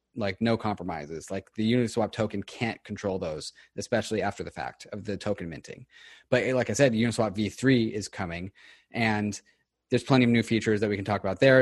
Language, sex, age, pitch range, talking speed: English, male, 20-39, 100-120 Hz, 195 wpm